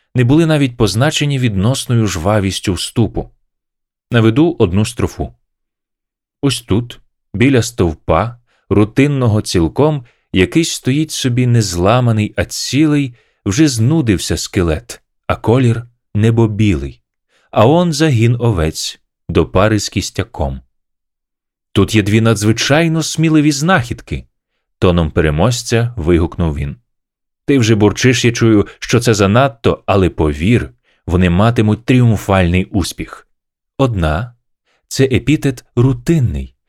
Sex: male